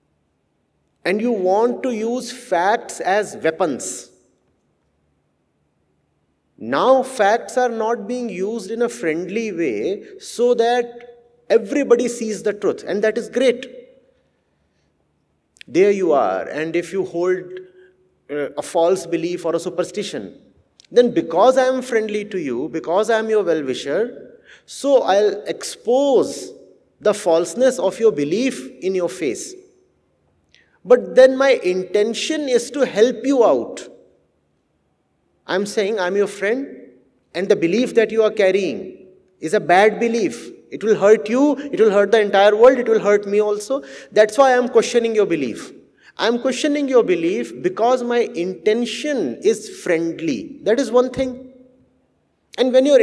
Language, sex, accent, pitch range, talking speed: English, male, Indian, 185-260 Hz, 145 wpm